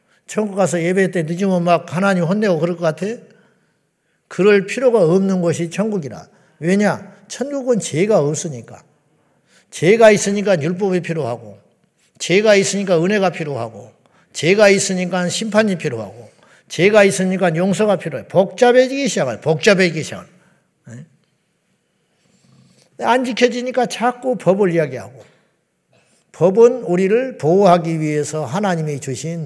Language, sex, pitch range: Korean, male, 165-220 Hz